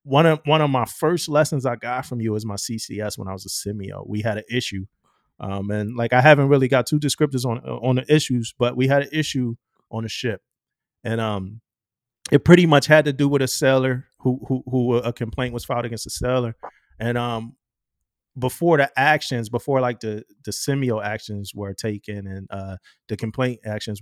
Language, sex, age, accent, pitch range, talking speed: English, male, 30-49, American, 105-140 Hz, 205 wpm